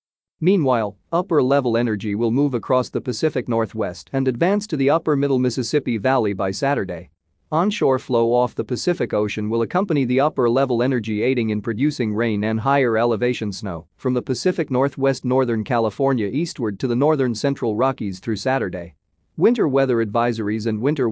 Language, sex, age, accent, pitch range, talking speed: English, male, 40-59, American, 110-135 Hz, 160 wpm